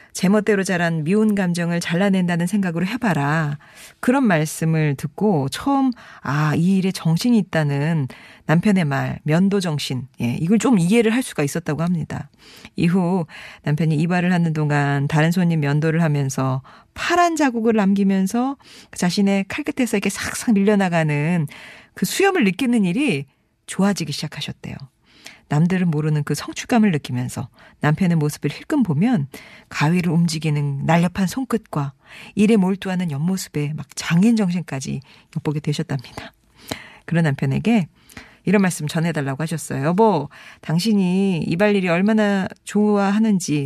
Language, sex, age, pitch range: Korean, female, 40-59, 150-200 Hz